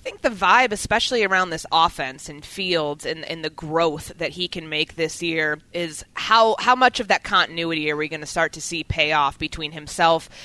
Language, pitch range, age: English, 165-215 Hz, 20-39